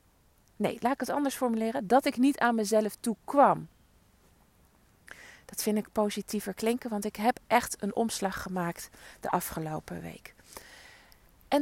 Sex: female